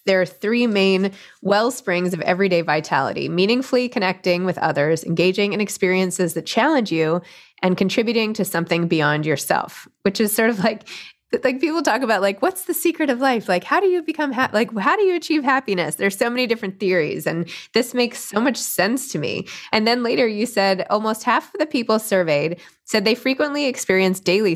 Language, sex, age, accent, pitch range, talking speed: English, female, 20-39, American, 175-235 Hz, 195 wpm